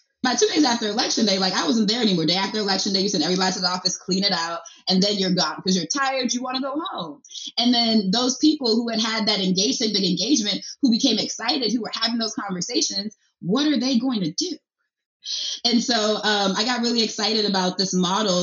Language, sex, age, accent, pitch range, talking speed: English, female, 20-39, American, 180-220 Hz, 230 wpm